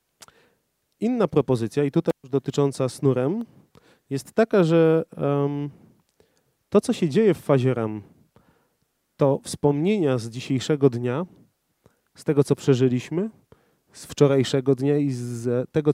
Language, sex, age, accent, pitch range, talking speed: Polish, male, 30-49, native, 125-160 Hz, 130 wpm